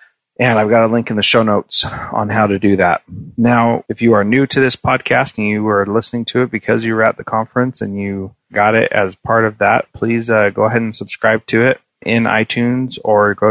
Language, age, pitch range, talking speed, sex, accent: English, 30-49, 100-115 Hz, 240 wpm, male, American